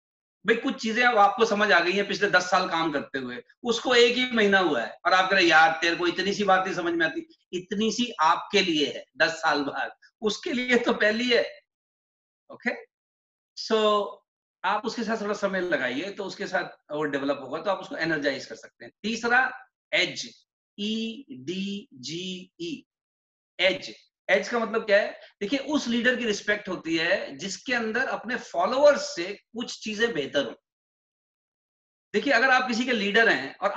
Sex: male